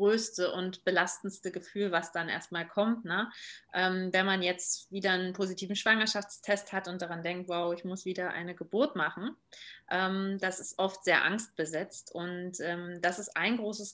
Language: German